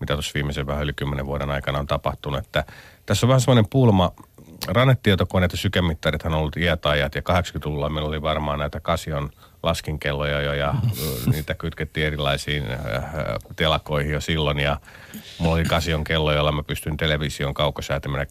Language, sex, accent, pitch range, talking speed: Finnish, male, native, 70-85 Hz, 155 wpm